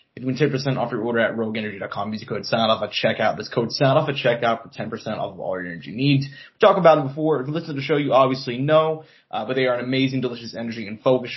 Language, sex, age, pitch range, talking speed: English, male, 20-39, 120-145 Hz, 270 wpm